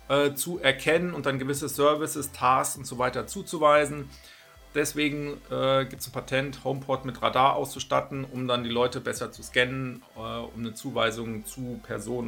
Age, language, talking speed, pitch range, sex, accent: 40-59, German, 165 wpm, 120-155 Hz, male, German